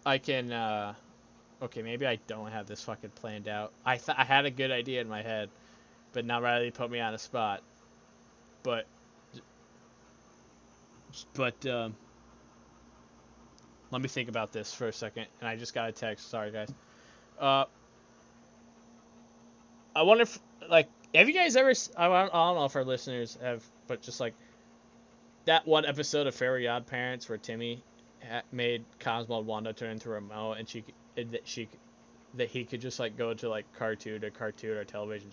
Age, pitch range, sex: 20-39, 110-130 Hz, male